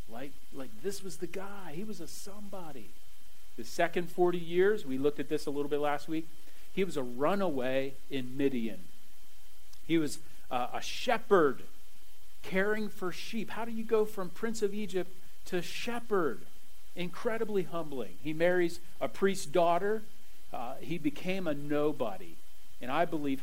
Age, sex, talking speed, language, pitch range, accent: 40-59, male, 155 wpm, English, 130-180 Hz, American